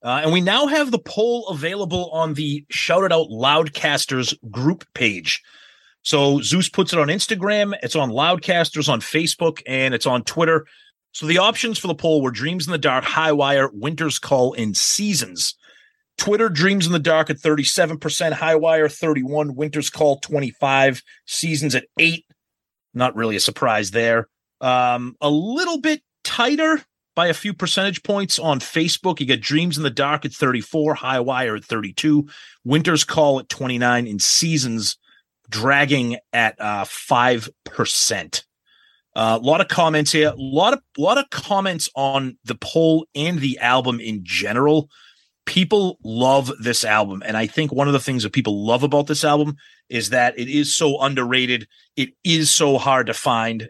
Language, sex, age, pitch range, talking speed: English, male, 30-49, 125-165 Hz, 165 wpm